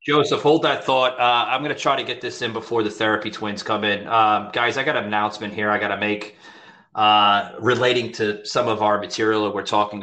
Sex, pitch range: male, 100-115 Hz